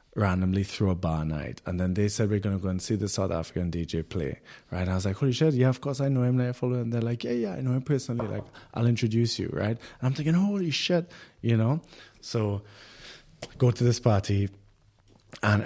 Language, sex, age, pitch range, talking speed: English, male, 20-39, 95-125 Hz, 240 wpm